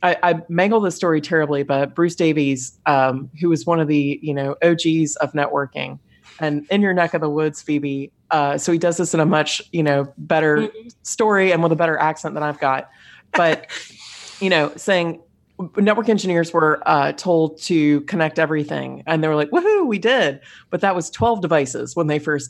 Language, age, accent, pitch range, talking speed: English, 30-49, American, 145-175 Hz, 200 wpm